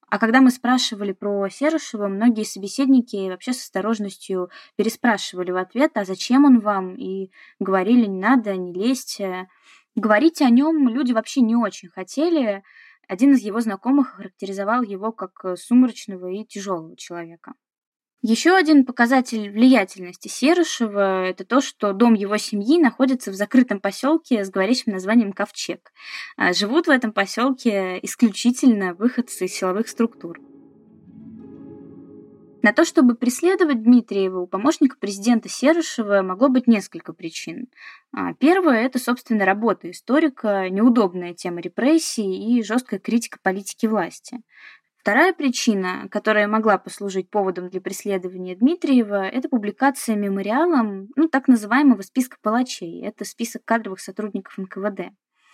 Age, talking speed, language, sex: 20-39, 130 wpm, Russian, female